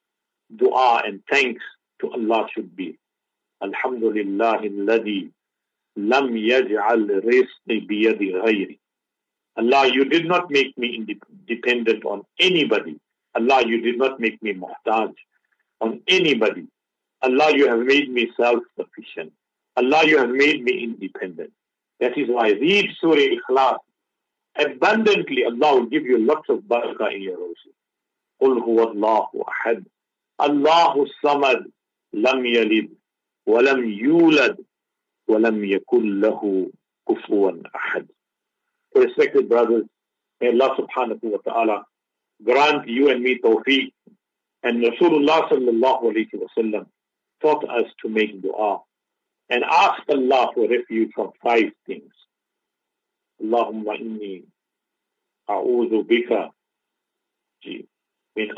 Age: 50-69